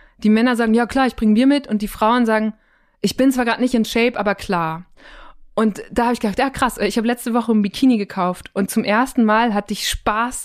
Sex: female